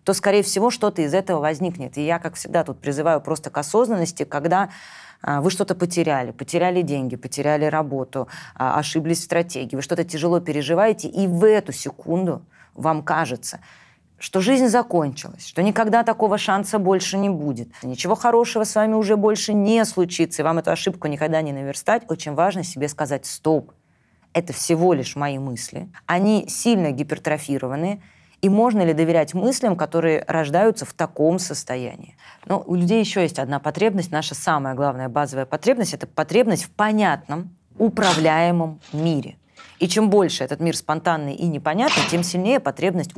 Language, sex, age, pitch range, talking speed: Russian, female, 20-39, 145-190 Hz, 160 wpm